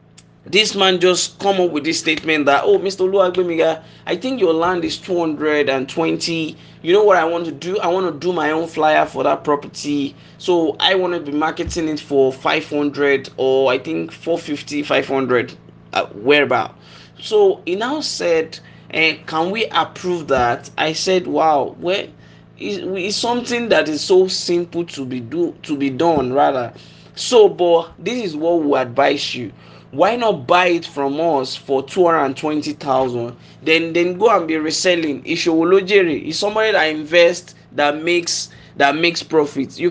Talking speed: 175 wpm